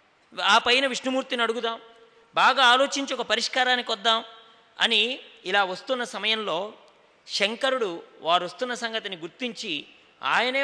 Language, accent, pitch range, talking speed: English, Indian, 210-240 Hz, 90 wpm